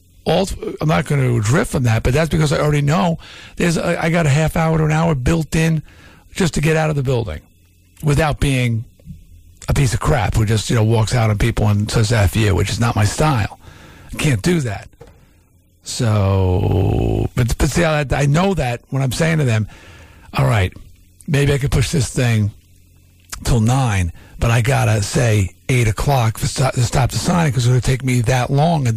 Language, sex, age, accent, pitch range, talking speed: English, male, 50-69, American, 95-145 Hz, 215 wpm